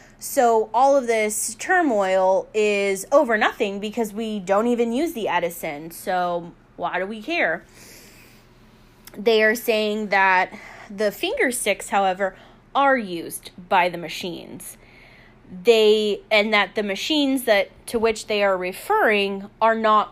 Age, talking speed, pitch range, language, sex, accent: 20-39, 135 wpm, 190-235 Hz, English, female, American